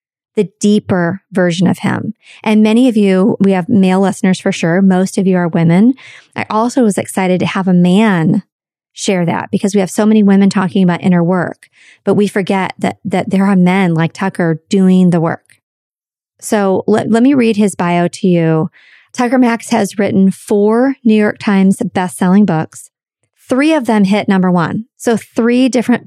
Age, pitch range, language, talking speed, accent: 40-59, 180-215 Hz, English, 190 wpm, American